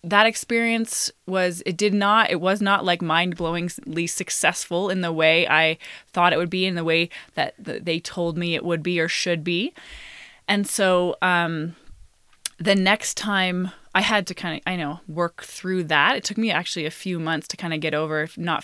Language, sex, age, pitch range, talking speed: English, female, 20-39, 165-200 Hz, 205 wpm